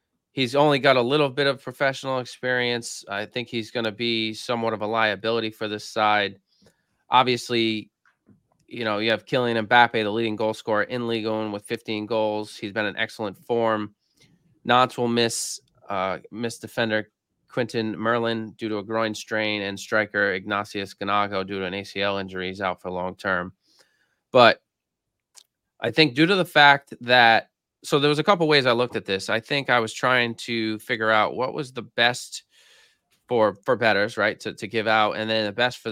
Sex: male